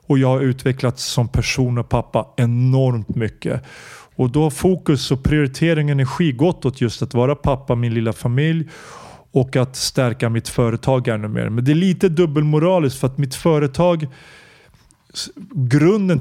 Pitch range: 120-145 Hz